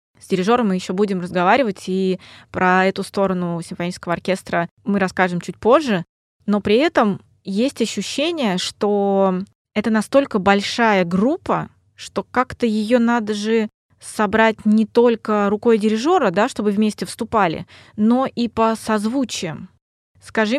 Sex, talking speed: female, 130 wpm